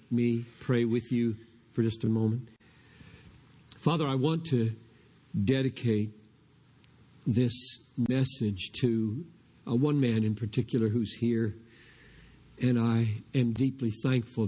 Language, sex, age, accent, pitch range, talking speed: English, male, 50-69, American, 110-130 Hz, 115 wpm